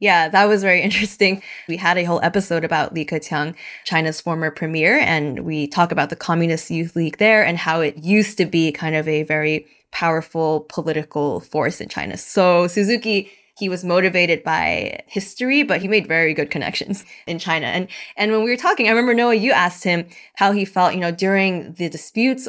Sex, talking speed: female, 200 wpm